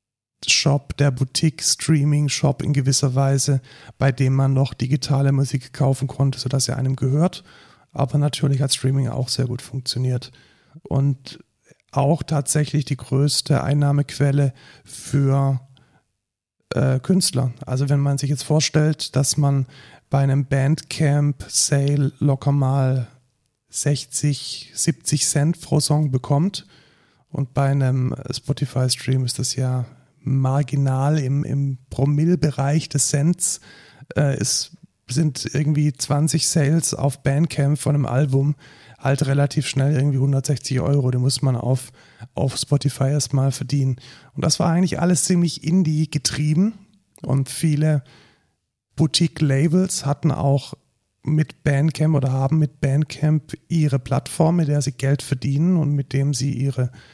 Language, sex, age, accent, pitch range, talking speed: German, male, 40-59, German, 135-150 Hz, 130 wpm